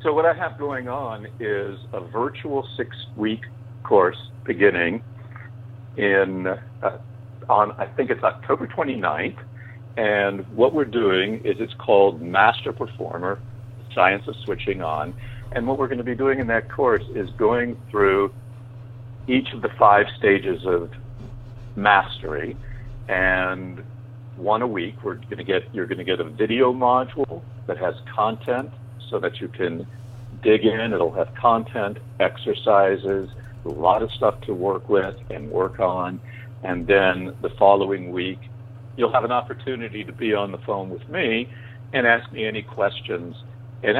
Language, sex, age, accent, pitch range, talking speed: English, male, 60-79, American, 105-120 Hz, 155 wpm